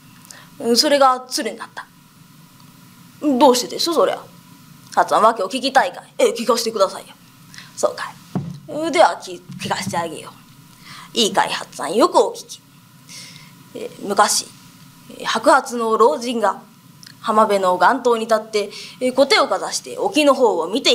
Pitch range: 220-330 Hz